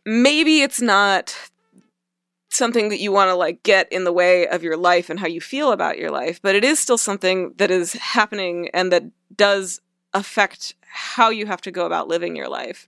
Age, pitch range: 20-39, 175-230 Hz